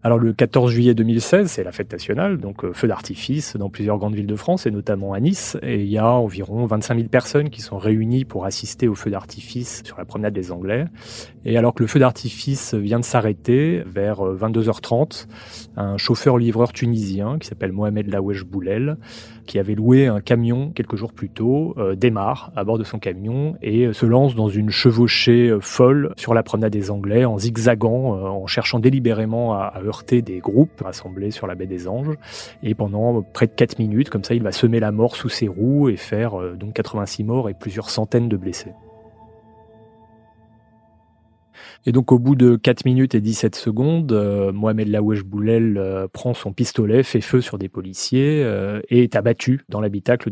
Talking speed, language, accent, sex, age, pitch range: 195 wpm, French, French, male, 30-49, 105-120 Hz